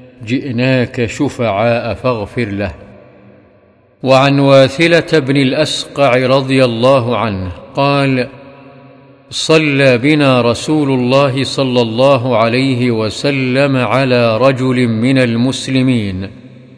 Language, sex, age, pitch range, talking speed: Arabic, male, 50-69, 120-140 Hz, 85 wpm